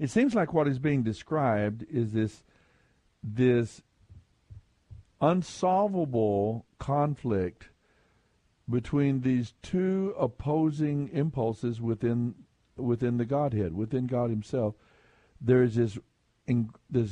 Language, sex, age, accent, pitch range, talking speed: English, male, 60-79, American, 110-145 Hz, 95 wpm